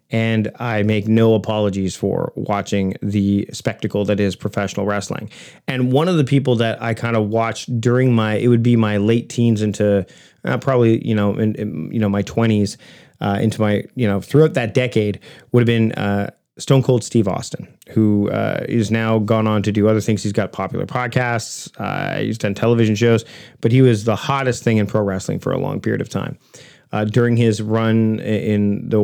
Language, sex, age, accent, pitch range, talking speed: English, male, 30-49, American, 105-115 Hz, 205 wpm